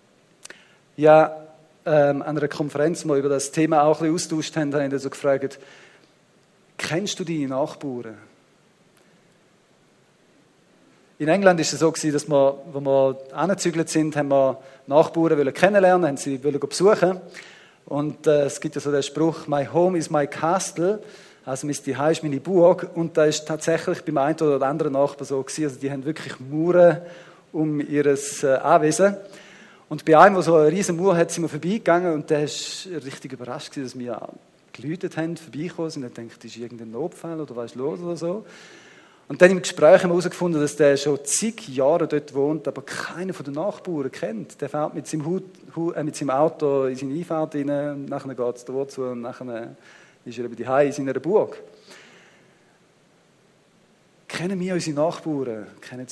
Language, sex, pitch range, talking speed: German, male, 140-170 Hz, 170 wpm